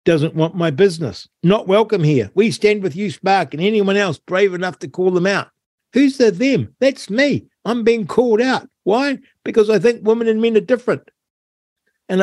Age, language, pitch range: 60-79, English, 150-215 Hz